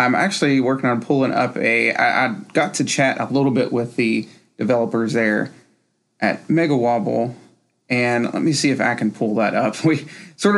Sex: male